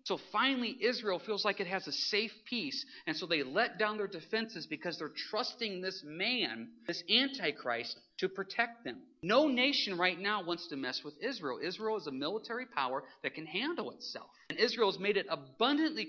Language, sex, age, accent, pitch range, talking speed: English, male, 40-59, American, 160-240 Hz, 190 wpm